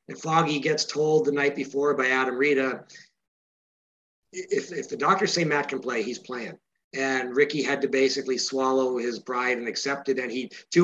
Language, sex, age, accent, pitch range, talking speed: English, male, 50-69, American, 125-145 Hz, 190 wpm